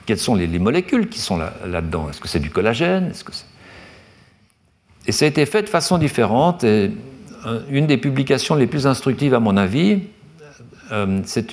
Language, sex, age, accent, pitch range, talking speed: French, male, 60-79, French, 105-175 Hz, 195 wpm